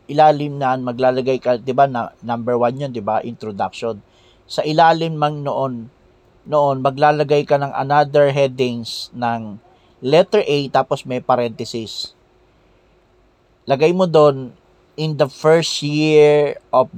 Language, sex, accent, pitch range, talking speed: Filipino, male, native, 120-150 Hz, 125 wpm